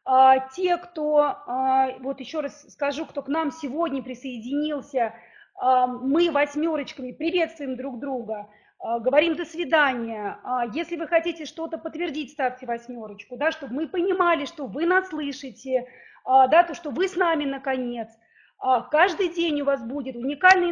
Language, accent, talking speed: Russian, native, 125 wpm